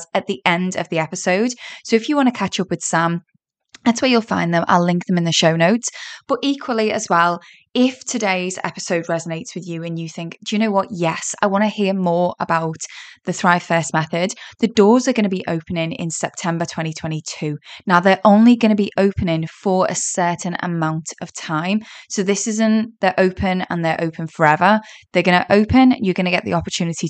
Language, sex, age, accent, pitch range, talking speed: English, female, 10-29, British, 170-215 Hz, 215 wpm